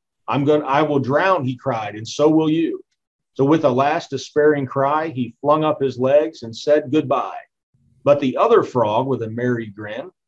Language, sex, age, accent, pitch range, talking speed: English, male, 40-59, American, 120-155 Hz, 195 wpm